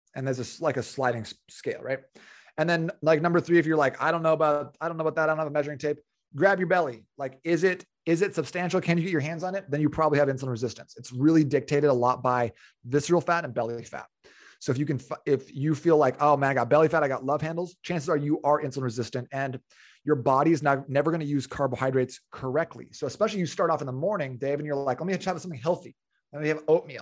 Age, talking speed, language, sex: 30-49, 260 wpm, English, male